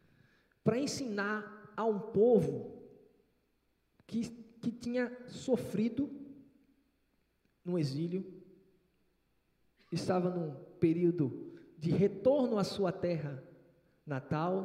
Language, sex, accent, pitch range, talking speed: Portuguese, male, Brazilian, 165-220 Hz, 80 wpm